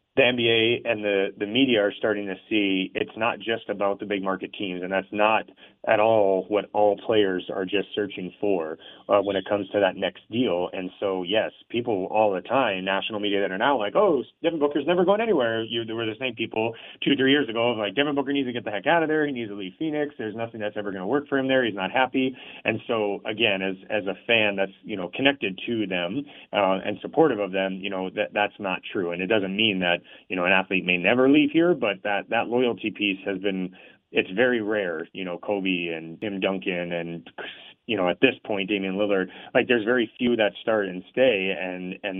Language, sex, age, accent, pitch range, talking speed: English, male, 30-49, American, 95-110 Hz, 235 wpm